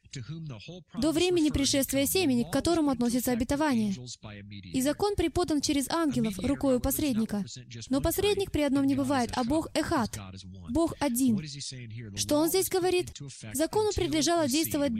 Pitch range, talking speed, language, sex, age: 210-320 Hz, 130 wpm, Russian, female, 20-39